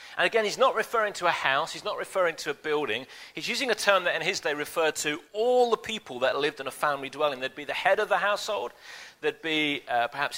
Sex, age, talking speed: male, 40-59, 255 wpm